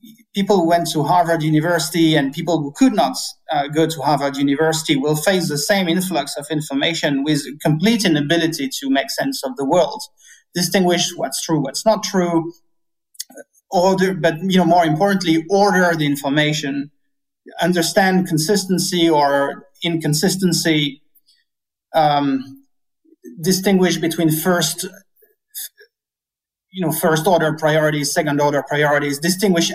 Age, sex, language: 30-49, male, English